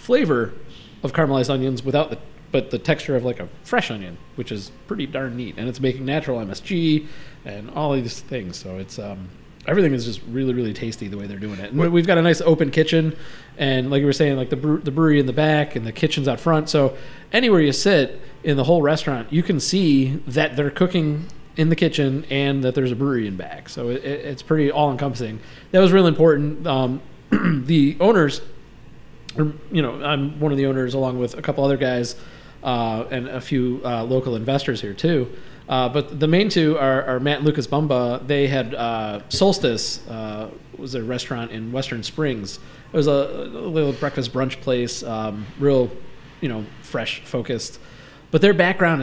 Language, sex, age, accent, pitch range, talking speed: English, male, 30-49, American, 120-150 Hz, 205 wpm